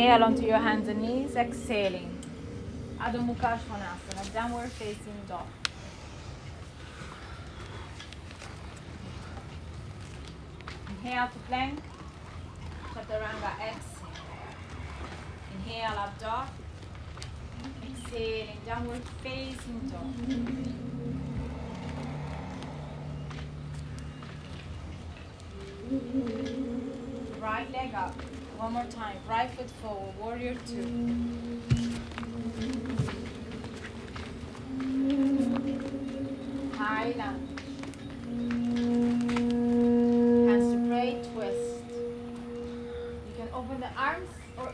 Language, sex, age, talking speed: English, female, 20-39, 65 wpm